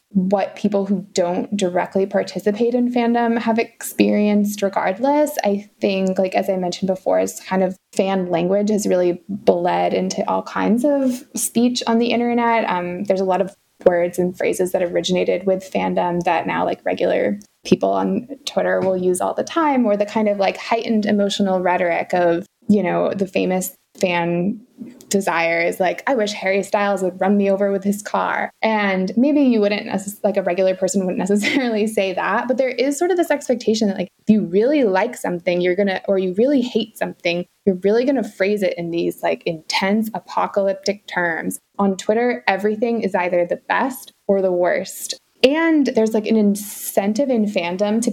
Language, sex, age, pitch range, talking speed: English, female, 20-39, 180-220 Hz, 185 wpm